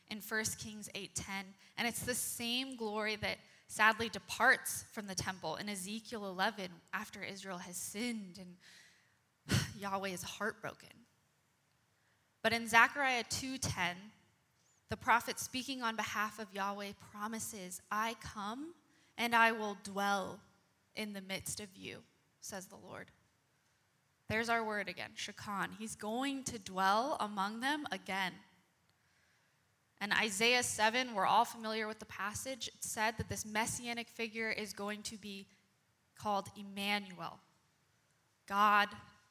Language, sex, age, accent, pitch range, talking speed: English, female, 10-29, American, 190-230 Hz, 130 wpm